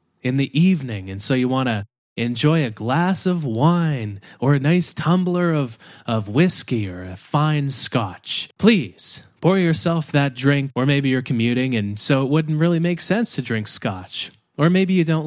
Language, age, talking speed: English, 20-39, 185 wpm